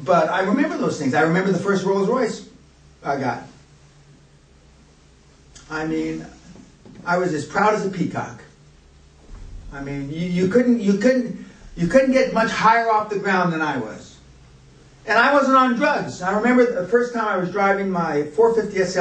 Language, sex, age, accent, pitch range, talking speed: English, male, 50-69, American, 130-195 Hz, 175 wpm